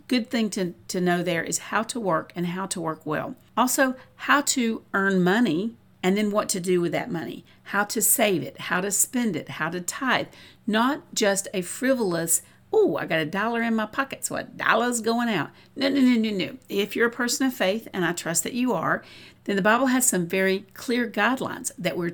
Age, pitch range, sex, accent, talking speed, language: 50-69, 170-230 Hz, female, American, 225 wpm, English